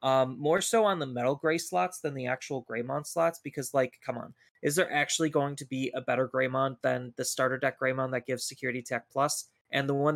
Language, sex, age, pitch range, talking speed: English, male, 20-39, 130-155 Hz, 230 wpm